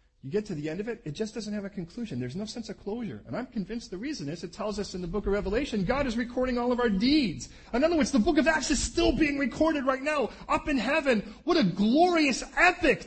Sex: male